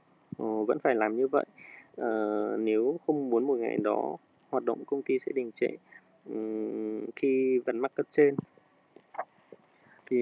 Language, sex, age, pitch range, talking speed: Vietnamese, male, 20-39, 110-140 Hz, 160 wpm